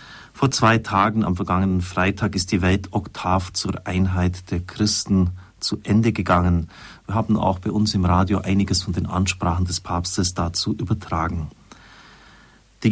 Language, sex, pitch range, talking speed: German, male, 90-105 Hz, 150 wpm